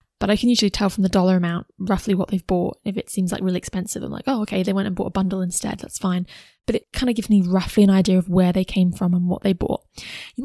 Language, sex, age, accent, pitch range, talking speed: English, female, 20-39, British, 185-225 Hz, 295 wpm